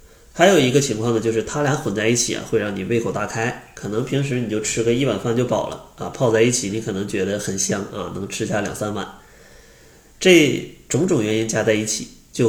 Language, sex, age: Chinese, male, 20-39